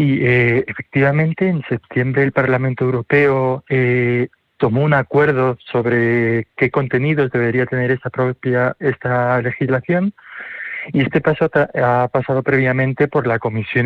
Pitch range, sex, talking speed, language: 120-135 Hz, male, 135 wpm, Spanish